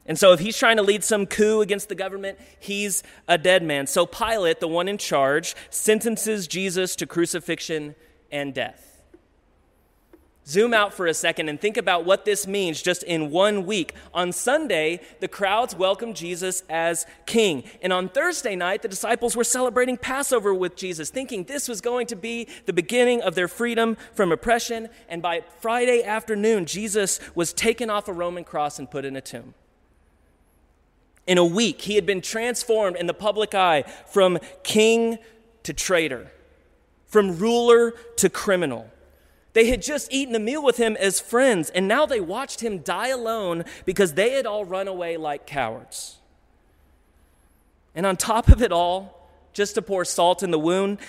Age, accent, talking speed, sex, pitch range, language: 30-49, American, 175 wpm, male, 170-230 Hz, English